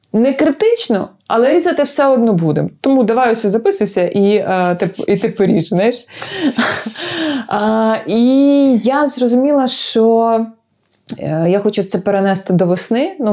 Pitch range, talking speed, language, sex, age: 170-225 Hz, 130 wpm, Ukrainian, female, 20-39